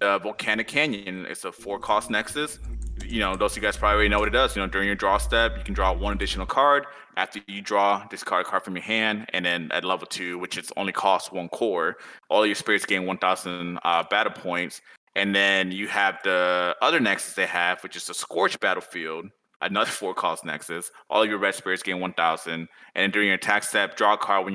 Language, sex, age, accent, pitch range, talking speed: English, male, 20-39, American, 90-115 Hz, 235 wpm